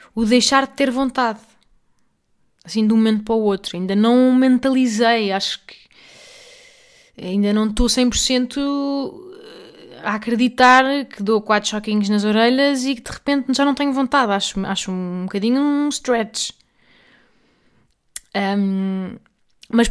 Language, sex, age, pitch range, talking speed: Portuguese, female, 20-39, 200-250 Hz, 140 wpm